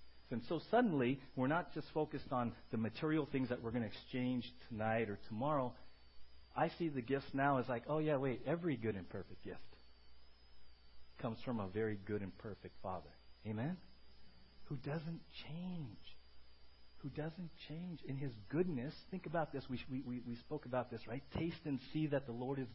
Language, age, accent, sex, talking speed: English, 40-59, American, male, 185 wpm